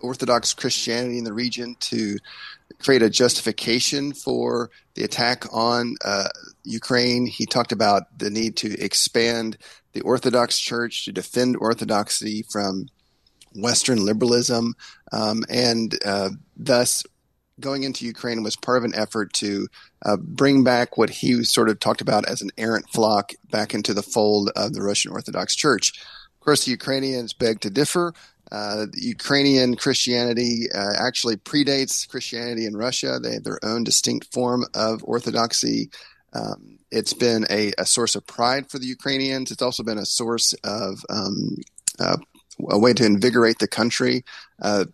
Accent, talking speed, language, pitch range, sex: American, 155 wpm, English, 110-125 Hz, male